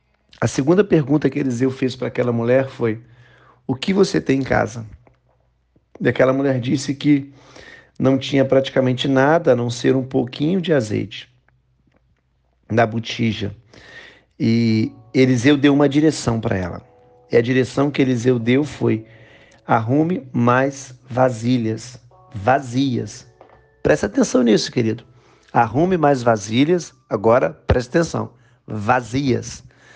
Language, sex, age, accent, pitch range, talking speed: Portuguese, male, 40-59, Brazilian, 120-140 Hz, 125 wpm